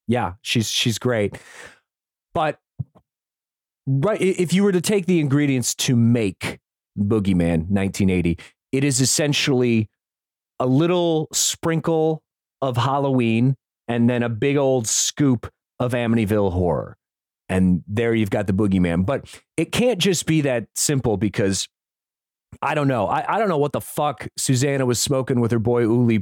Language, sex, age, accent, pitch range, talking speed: English, male, 30-49, American, 115-155 Hz, 150 wpm